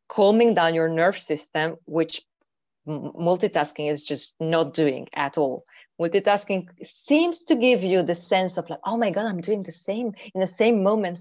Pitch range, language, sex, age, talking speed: 160-210 Hz, English, female, 30-49, 175 wpm